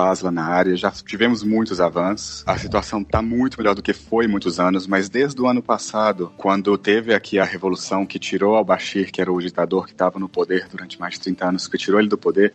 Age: 30-49